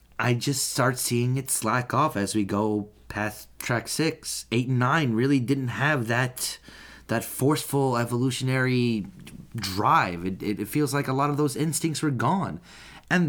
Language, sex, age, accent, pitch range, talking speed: English, male, 30-49, American, 110-145 Hz, 165 wpm